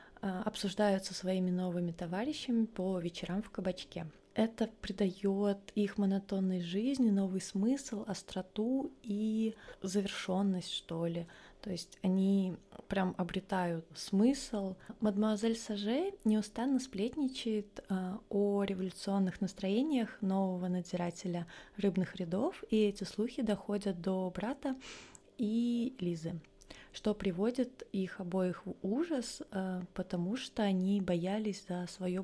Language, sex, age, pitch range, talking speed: Russian, female, 20-39, 185-220 Hz, 105 wpm